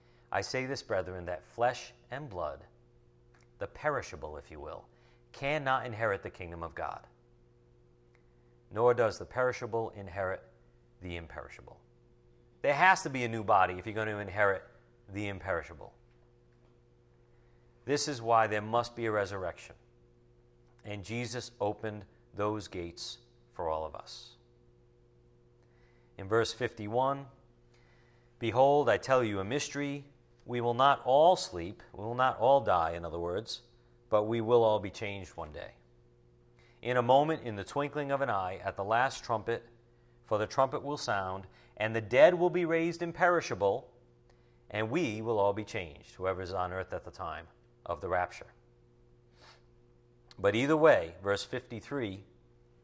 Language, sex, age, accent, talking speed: English, male, 50-69, American, 150 wpm